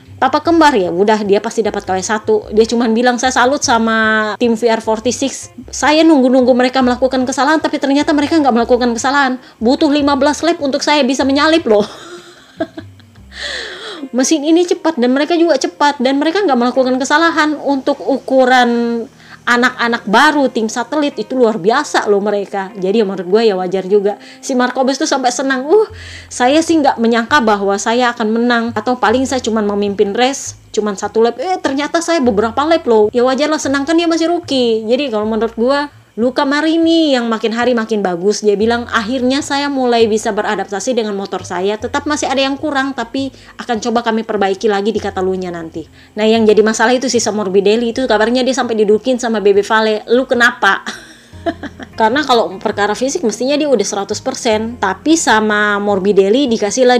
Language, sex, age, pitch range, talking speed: Indonesian, female, 20-39, 215-280 Hz, 175 wpm